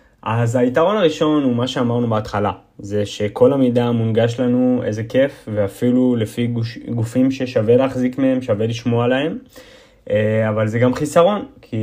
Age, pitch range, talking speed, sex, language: 20-39, 110-145 Hz, 145 wpm, male, Hebrew